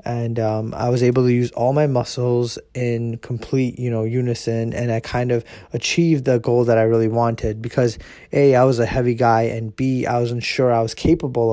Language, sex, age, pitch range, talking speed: English, male, 20-39, 115-125 Hz, 215 wpm